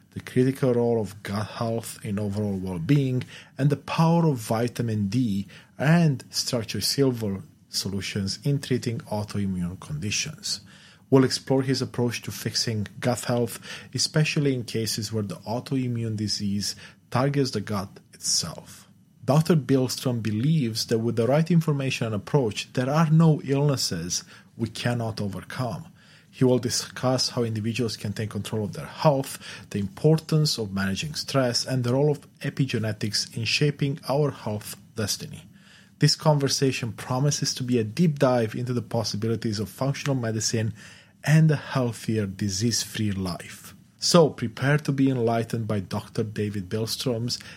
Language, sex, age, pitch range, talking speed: English, male, 40-59, 105-140 Hz, 145 wpm